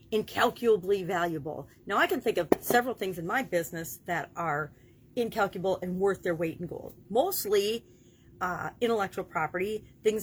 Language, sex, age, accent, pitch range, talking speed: English, female, 40-59, American, 165-255 Hz, 155 wpm